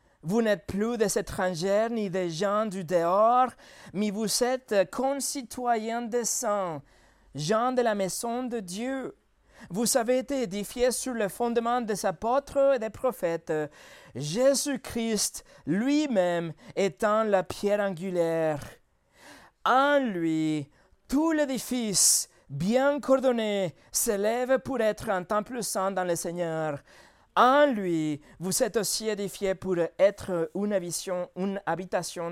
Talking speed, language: 130 wpm, French